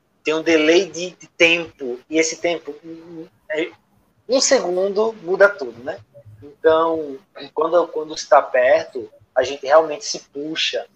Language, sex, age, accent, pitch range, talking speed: Portuguese, male, 20-39, Brazilian, 140-190 Hz, 130 wpm